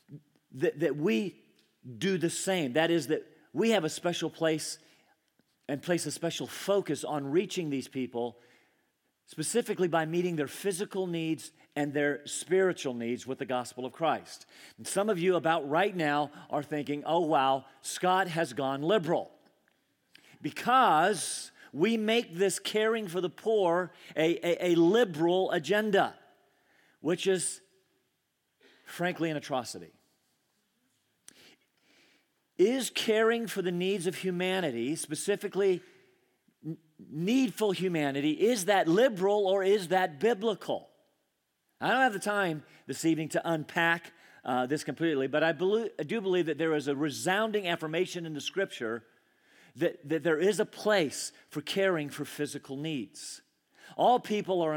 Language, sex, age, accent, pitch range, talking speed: English, male, 40-59, American, 150-195 Hz, 140 wpm